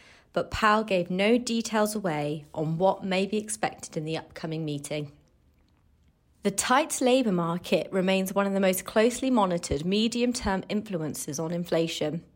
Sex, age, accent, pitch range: female, 30-49, British, 160-220 Hz